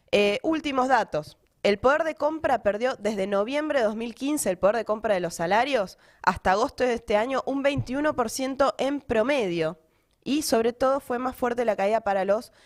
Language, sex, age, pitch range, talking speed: Spanish, female, 20-39, 195-270 Hz, 180 wpm